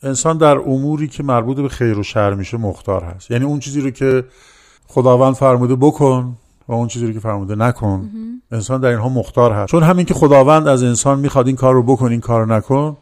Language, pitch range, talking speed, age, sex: Persian, 115-150 Hz, 215 wpm, 50-69, male